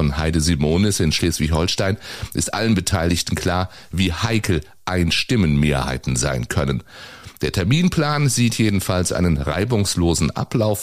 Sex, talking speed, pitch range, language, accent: male, 115 wpm, 80-105 Hz, German, German